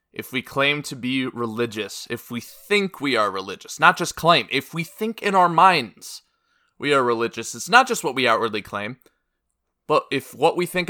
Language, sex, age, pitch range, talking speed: English, male, 20-39, 115-140 Hz, 200 wpm